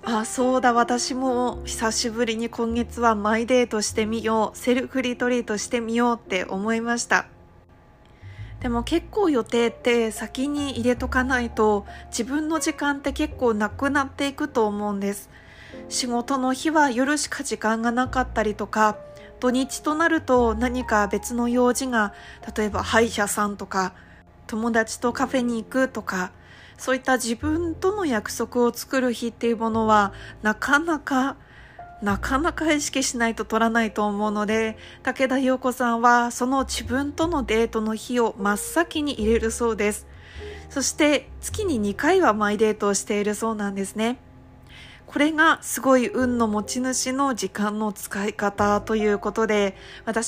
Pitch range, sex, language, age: 210-260 Hz, female, Japanese, 20-39